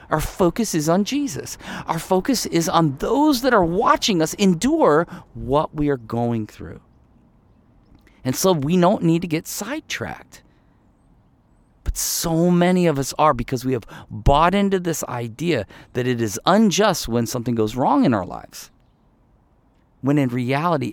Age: 40-59